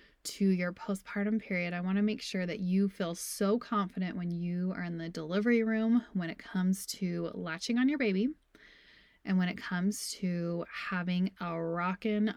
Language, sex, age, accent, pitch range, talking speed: English, female, 20-39, American, 180-220 Hz, 180 wpm